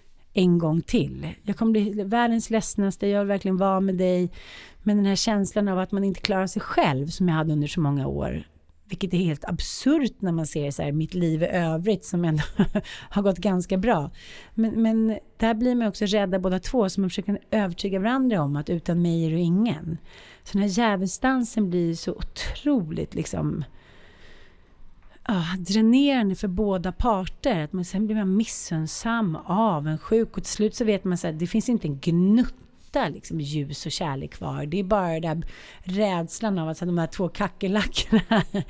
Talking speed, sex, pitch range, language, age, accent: 190 wpm, female, 160-205 Hz, Swedish, 30-49, native